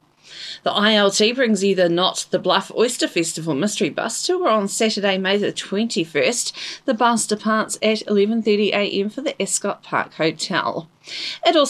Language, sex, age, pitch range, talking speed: English, female, 40-59, 195-240 Hz, 135 wpm